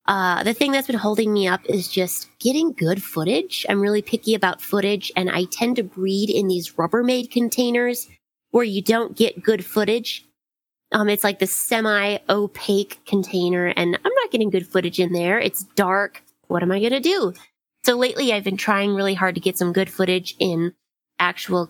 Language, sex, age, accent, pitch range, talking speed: English, female, 20-39, American, 185-225 Hz, 190 wpm